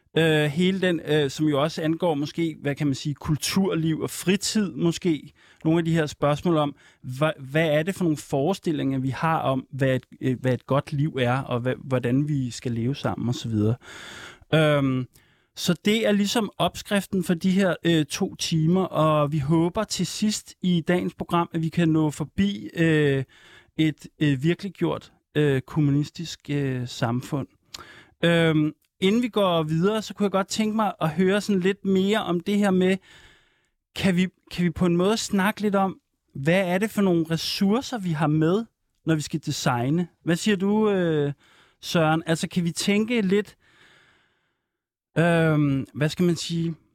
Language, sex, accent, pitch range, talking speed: Danish, male, native, 145-185 Hz, 165 wpm